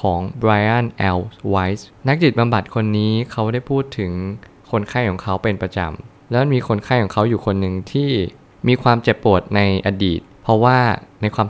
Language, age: Thai, 20-39